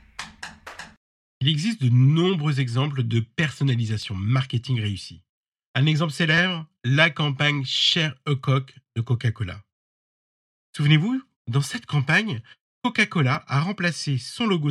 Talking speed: 115 wpm